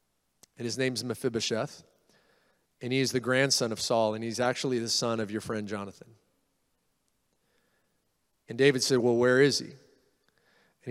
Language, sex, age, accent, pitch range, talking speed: English, male, 30-49, American, 125-165 Hz, 160 wpm